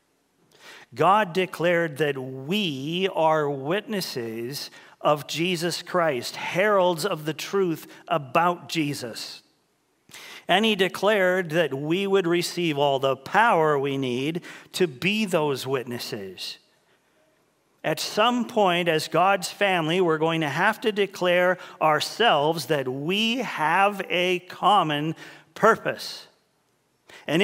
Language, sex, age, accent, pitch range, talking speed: English, male, 50-69, American, 155-200 Hz, 110 wpm